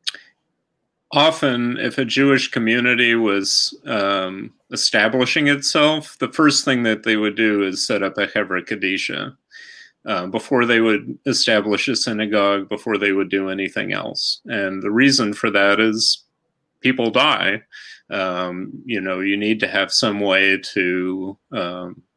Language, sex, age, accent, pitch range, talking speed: English, male, 30-49, American, 100-120 Hz, 145 wpm